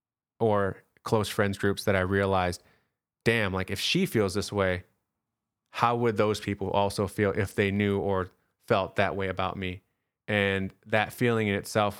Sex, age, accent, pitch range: male, 20-39, American, 100-115 Hz